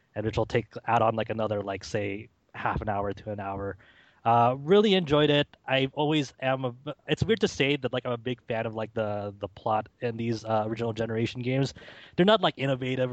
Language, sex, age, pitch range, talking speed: English, male, 20-39, 115-140 Hz, 225 wpm